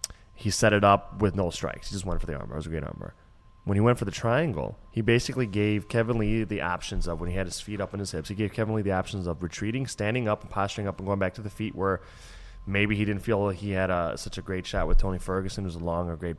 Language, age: English, 20-39